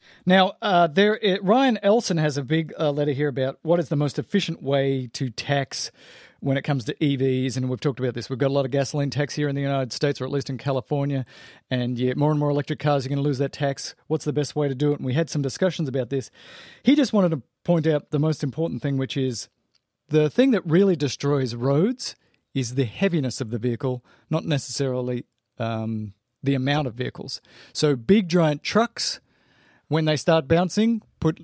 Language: English